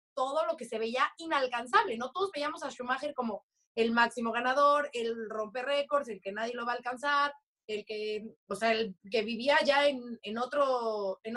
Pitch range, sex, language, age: 220-285 Hz, female, Spanish, 30-49